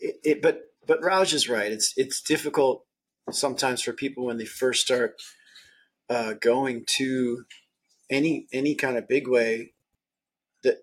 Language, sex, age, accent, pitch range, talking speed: English, male, 30-49, American, 120-165 Hz, 150 wpm